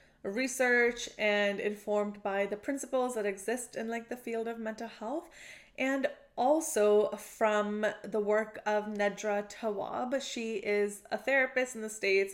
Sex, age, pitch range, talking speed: female, 20-39, 205-240 Hz, 145 wpm